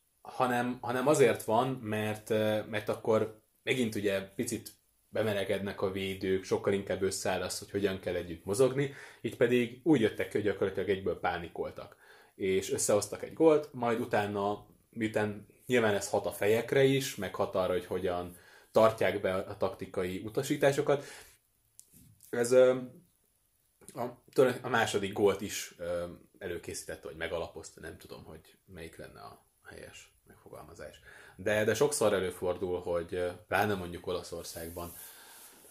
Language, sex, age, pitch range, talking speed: Hungarian, male, 20-39, 95-125 Hz, 135 wpm